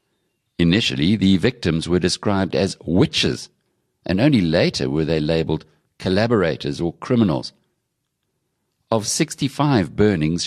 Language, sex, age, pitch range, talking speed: English, male, 60-79, 80-115 Hz, 110 wpm